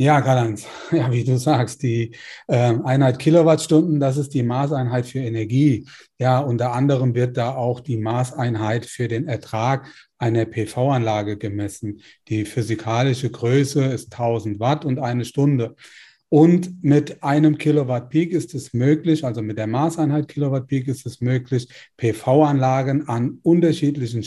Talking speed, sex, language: 140 wpm, male, German